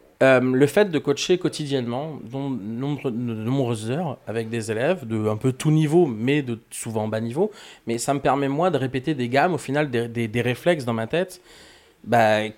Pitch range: 115-145 Hz